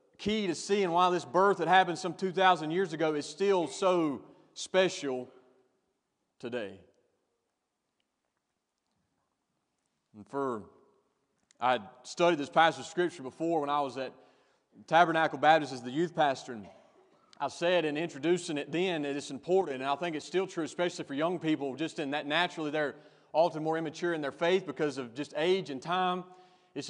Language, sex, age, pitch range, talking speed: English, male, 30-49, 130-165 Hz, 165 wpm